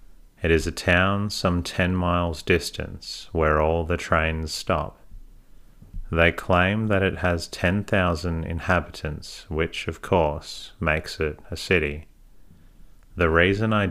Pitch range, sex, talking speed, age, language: 80-90 Hz, male, 130 wpm, 30-49, English